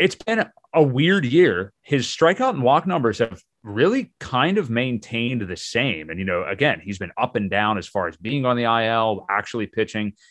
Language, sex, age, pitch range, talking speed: English, male, 30-49, 100-140 Hz, 205 wpm